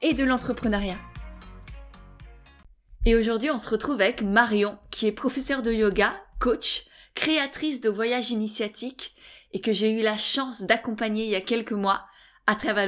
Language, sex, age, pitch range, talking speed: French, female, 20-39, 215-255 Hz, 160 wpm